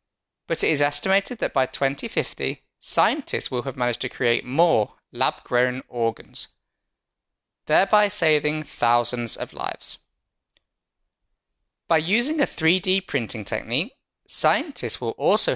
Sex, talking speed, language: male, 115 wpm, English